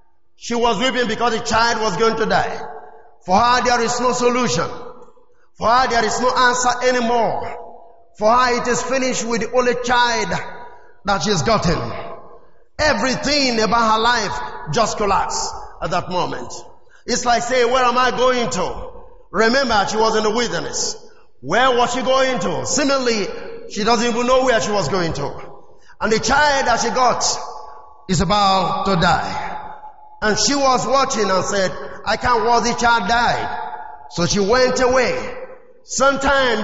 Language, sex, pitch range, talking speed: English, male, 220-265 Hz, 165 wpm